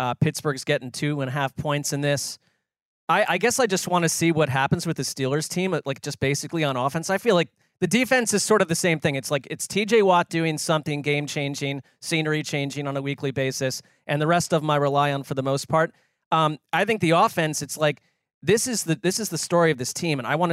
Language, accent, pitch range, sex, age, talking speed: English, American, 145-175 Hz, male, 30-49, 250 wpm